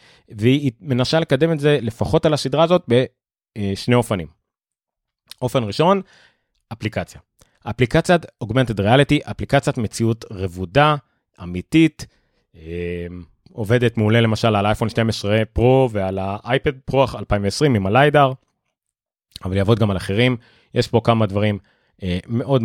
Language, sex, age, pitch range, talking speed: Hebrew, male, 30-49, 105-135 Hz, 120 wpm